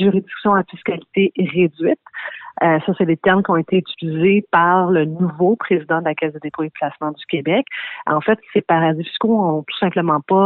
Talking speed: 205 wpm